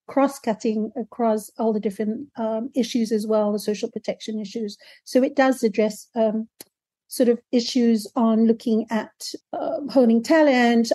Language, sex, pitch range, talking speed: English, female, 215-245 Hz, 150 wpm